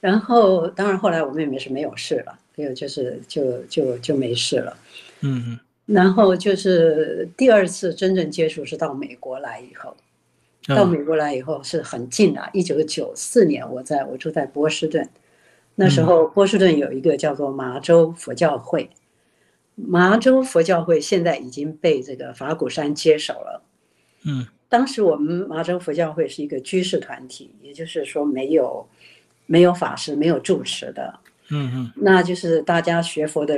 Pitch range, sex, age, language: 145-185 Hz, female, 60-79, Chinese